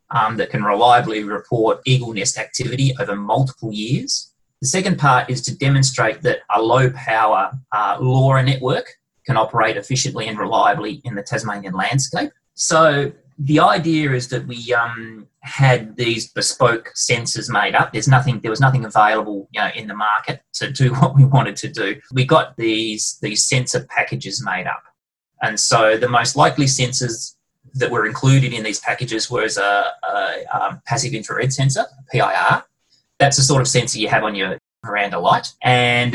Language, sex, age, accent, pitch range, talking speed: English, male, 30-49, Australian, 115-135 Hz, 175 wpm